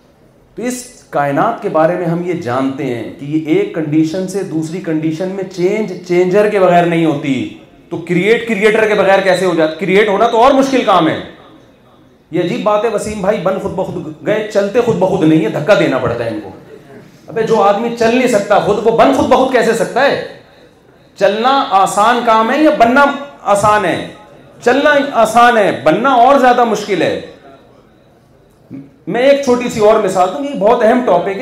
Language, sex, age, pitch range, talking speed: Urdu, male, 40-59, 155-225 Hz, 195 wpm